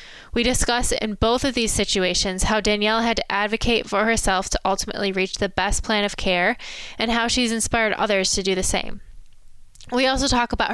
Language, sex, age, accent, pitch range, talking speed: English, female, 10-29, American, 200-235 Hz, 195 wpm